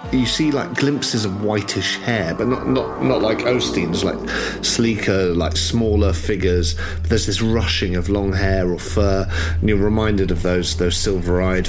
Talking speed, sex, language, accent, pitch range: 175 wpm, male, English, British, 80-95 Hz